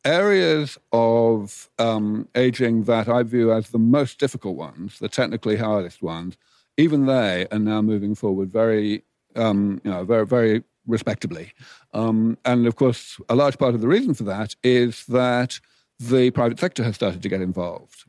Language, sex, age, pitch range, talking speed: English, male, 50-69, 110-125 Hz, 170 wpm